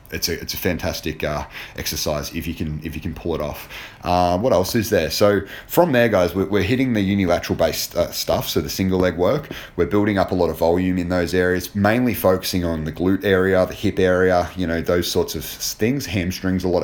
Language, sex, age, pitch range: English, male, 30-49, 80-100 Hz